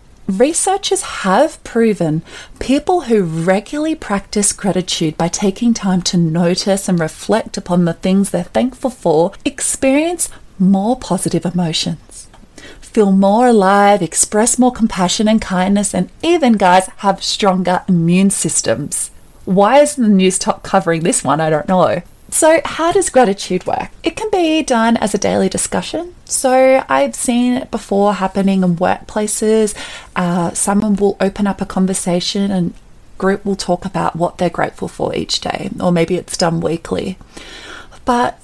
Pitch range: 180-225 Hz